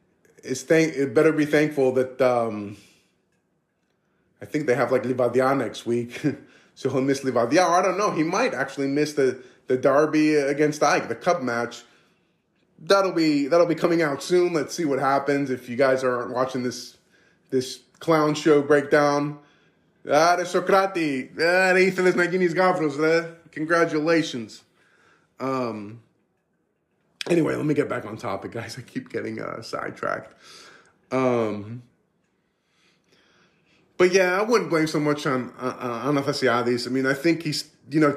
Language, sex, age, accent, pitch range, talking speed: English, male, 20-39, American, 125-155 Hz, 150 wpm